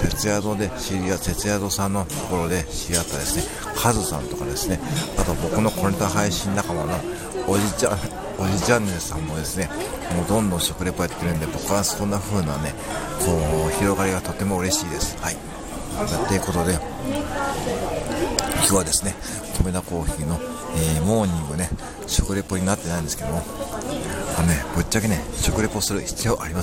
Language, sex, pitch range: Japanese, male, 80-95 Hz